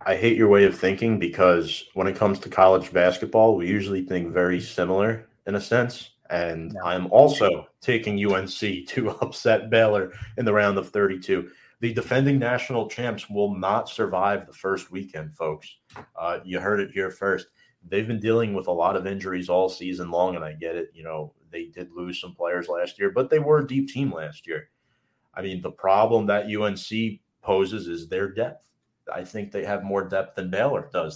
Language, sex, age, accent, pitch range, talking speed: English, male, 30-49, American, 90-115 Hz, 195 wpm